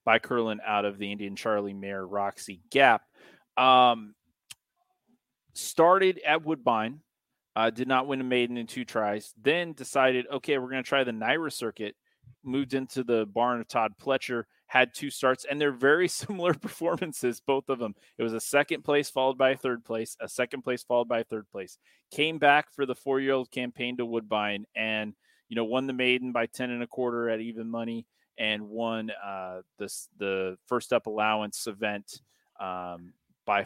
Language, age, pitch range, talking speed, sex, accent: English, 30-49, 105-130 Hz, 180 wpm, male, American